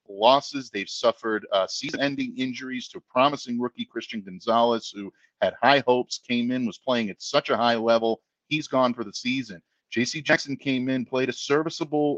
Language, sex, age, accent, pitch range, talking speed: English, male, 40-59, American, 115-140 Hz, 180 wpm